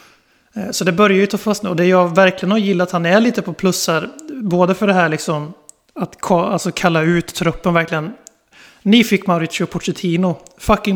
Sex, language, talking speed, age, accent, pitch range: male, Swedish, 190 wpm, 30-49, native, 165-195 Hz